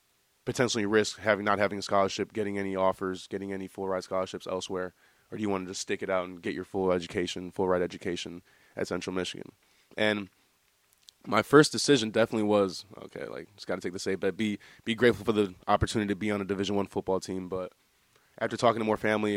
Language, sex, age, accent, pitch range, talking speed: English, male, 20-39, American, 95-110 Hz, 220 wpm